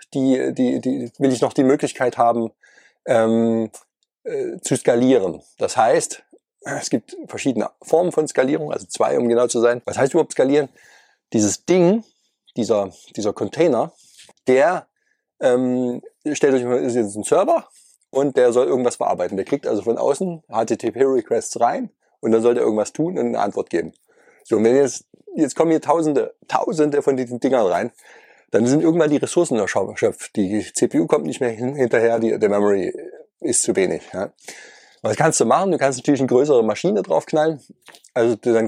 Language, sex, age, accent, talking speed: German, male, 30-49, German, 170 wpm